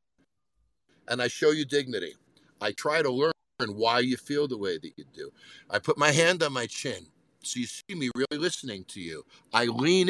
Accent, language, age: American, English, 50-69